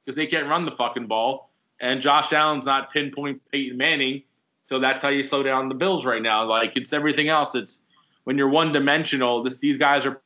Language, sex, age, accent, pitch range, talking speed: English, male, 20-39, American, 120-145 Hz, 215 wpm